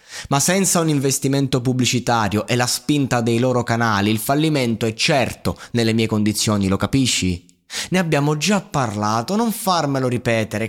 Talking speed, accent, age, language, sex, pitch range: 150 wpm, native, 20-39, Italian, male, 110-150 Hz